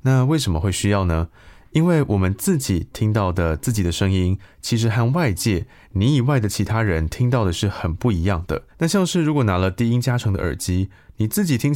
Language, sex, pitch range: Chinese, male, 90-120 Hz